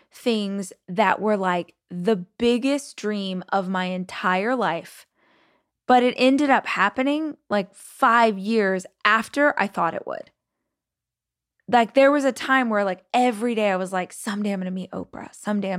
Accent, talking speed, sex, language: American, 165 wpm, female, English